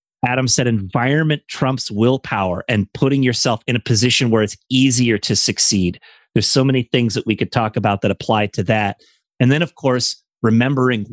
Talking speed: 185 wpm